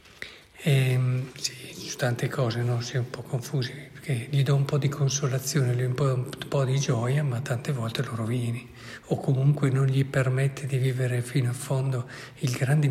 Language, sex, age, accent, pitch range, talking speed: Italian, male, 50-69, native, 125-140 Hz, 190 wpm